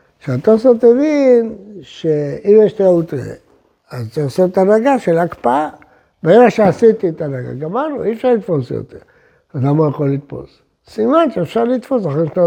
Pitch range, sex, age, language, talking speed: 155-255 Hz, male, 60-79, Hebrew, 150 wpm